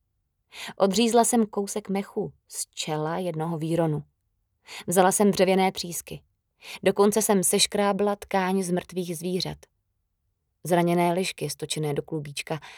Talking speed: 115 wpm